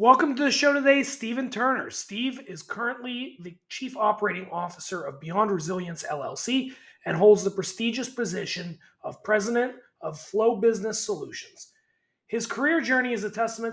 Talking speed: 155 wpm